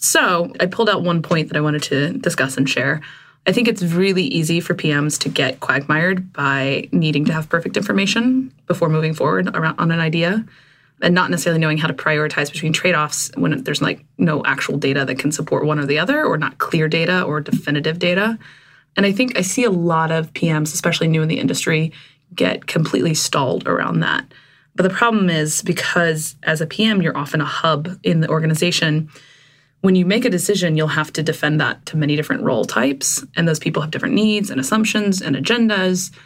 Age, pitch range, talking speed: 20-39, 150-180 Hz, 205 wpm